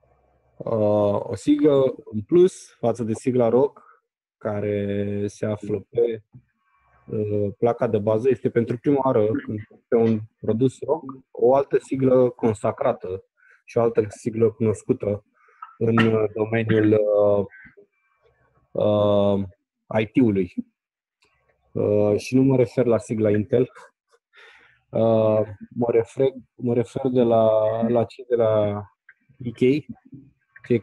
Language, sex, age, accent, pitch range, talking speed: Romanian, male, 20-39, native, 105-130 Hz, 115 wpm